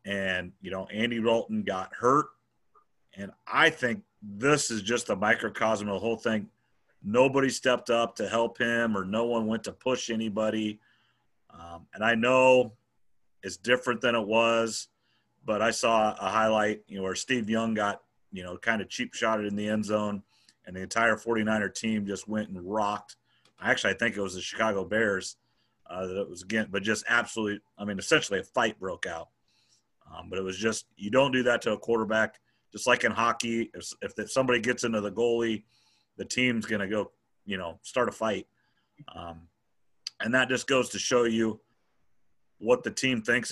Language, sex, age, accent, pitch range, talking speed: English, male, 40-59, American, 100-115 Hz, 190 wpm